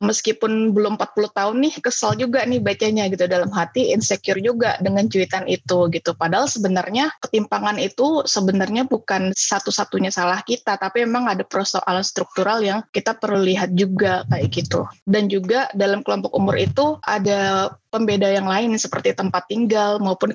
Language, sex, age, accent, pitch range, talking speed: Indonesian, female, 20-39, native, 190-215 Hz, 155 wpm